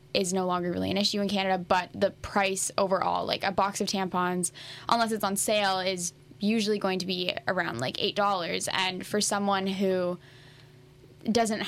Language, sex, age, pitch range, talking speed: English, female, 10-29, 180-205 Hz, 175 wpm